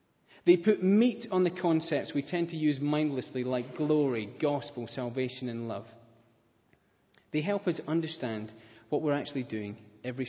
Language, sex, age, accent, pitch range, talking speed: English, male, 30-49, British, 115-150 Hz, 150 wpm